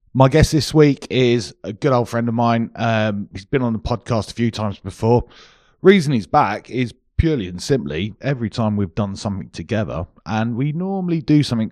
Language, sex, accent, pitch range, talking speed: English, male, British, 95-120 Hz, 200 wpm